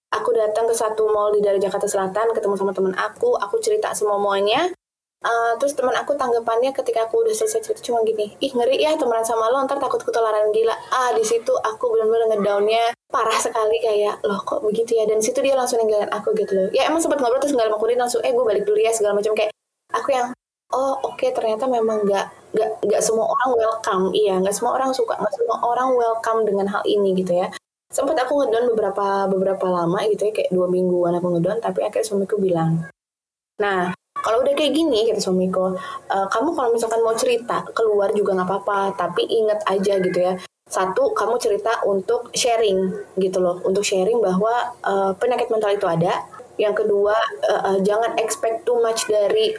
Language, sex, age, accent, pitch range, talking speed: Indonesian, female, 20-39, native, 200-245 Hz, 205 wpm